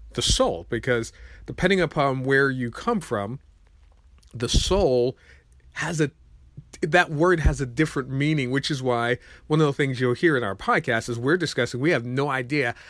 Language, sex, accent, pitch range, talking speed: English, male, American, 115-150 Hz, 175 wpm